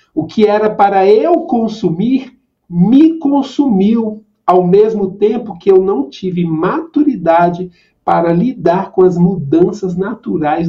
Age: 50-69